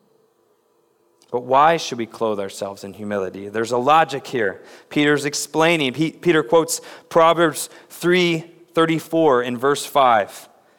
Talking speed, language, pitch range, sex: 130 wpm, English, 130-185 Hz, male